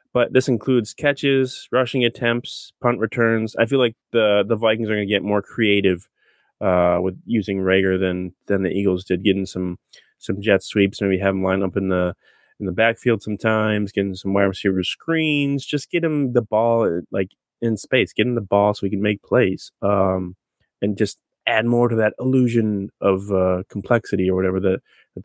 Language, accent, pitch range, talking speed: English, American, 95-125 Hz, 190 wpm